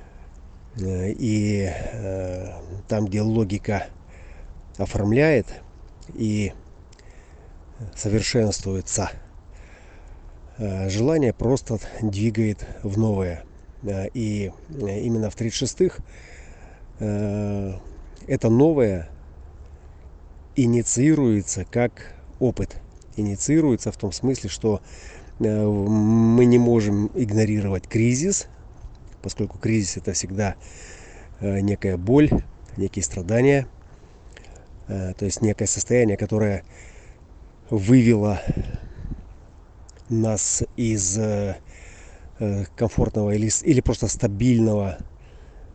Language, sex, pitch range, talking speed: Russian, male, 85-110 Hz, 65 wpm